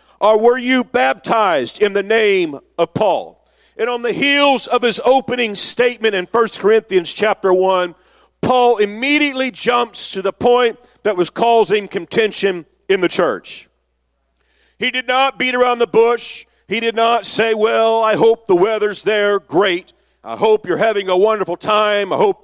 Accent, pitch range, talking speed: American, 205-250 Hz, 165 wpm